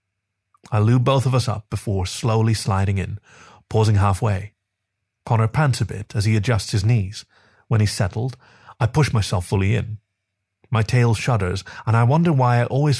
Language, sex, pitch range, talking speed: English, male, 100-125 Hz, 175 wpm